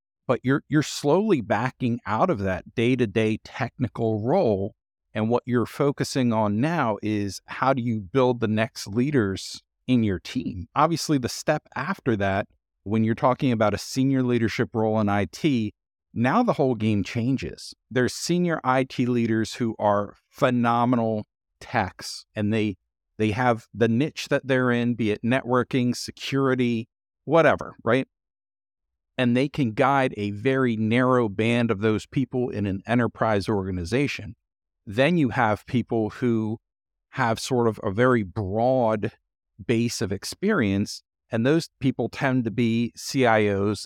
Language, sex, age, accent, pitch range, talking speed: English, male, 50-69, American, 105-130 Hz, 145 wpm